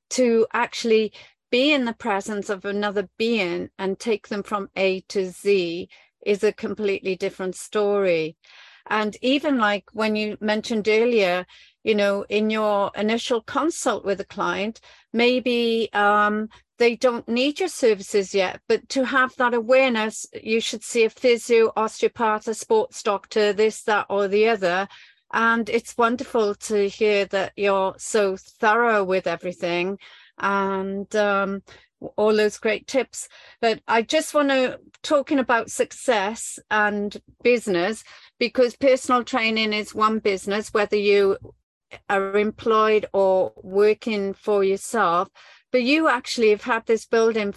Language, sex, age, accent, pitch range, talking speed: English, female, 40-59, British, 200-235 Hz, 140 wpm